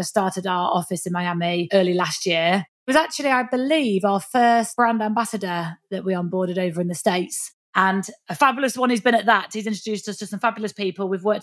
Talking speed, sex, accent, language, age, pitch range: 215 wpm, female, British, English, 30-49, 185-230 Hz